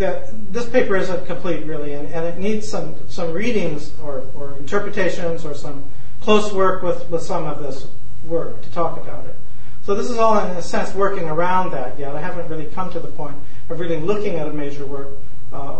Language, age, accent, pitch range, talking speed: English, 40-59, American, 145-195 Hz, 215 wpm